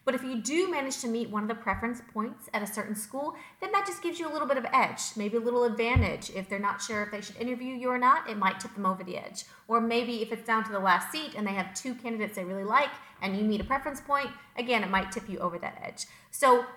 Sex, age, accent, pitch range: female, 30-49, American, 205-270 Hz